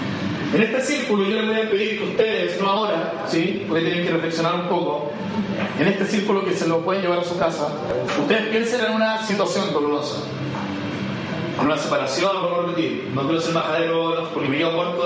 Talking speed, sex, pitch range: 200 wpm, male, 165-195 Hz